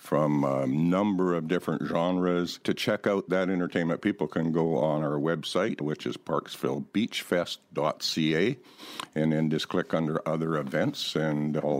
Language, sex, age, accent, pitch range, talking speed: English, male, 60-79, American, 75-95 Hz, 145 wpm